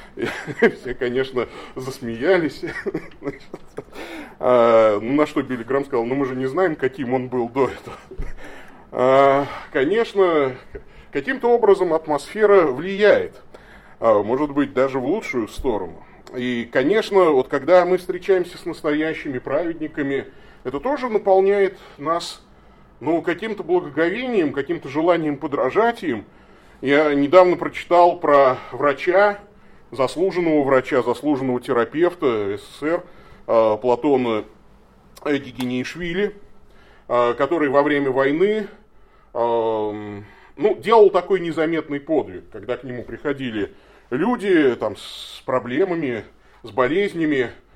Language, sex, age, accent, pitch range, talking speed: Russian, male, 30-49, native, 130-190 Hz, 105 wpm